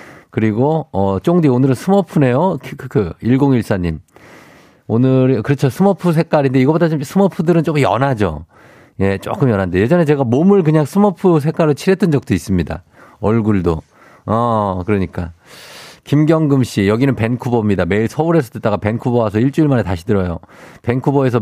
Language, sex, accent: Korean, male, native